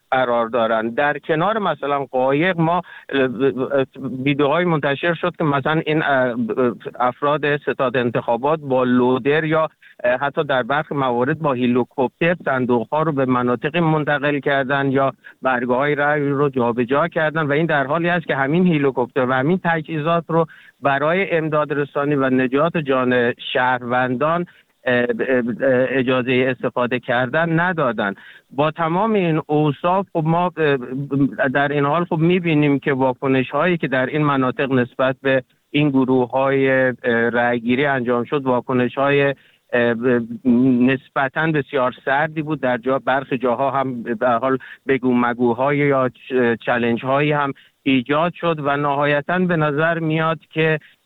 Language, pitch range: Persian, 125-155 Hz